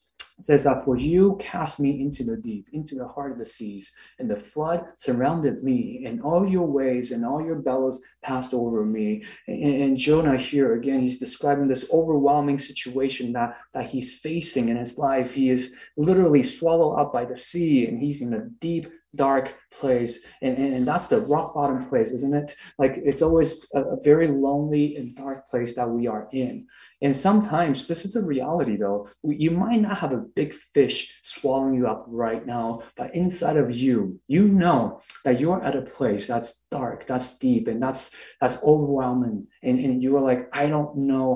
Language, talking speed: English, 190 wpm